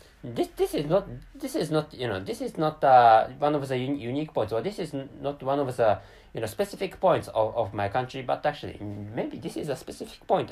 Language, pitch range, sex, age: English, 105-155 Hz, male, 20-39